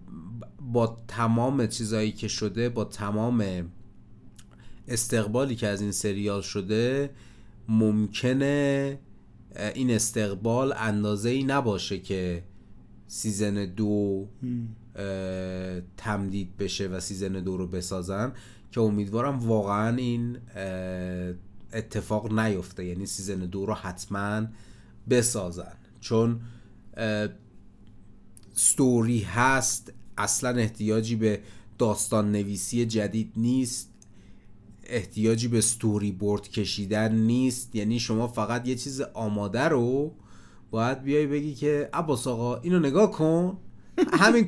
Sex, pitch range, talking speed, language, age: male, 105-130 Hz, 100 wpm, Persian, 30-49